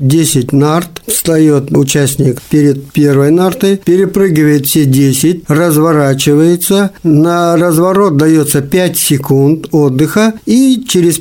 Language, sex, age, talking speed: Russian, male, 50-69, 100 wpm